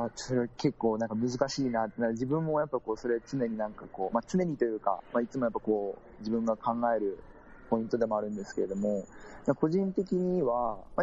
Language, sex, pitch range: Japanese, male, 110-150 Hz